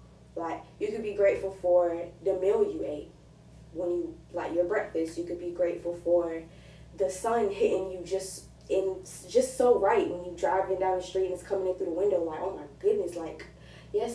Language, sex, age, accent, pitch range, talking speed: English, female, 20-39, American, 170-195 Hz, 205 wpm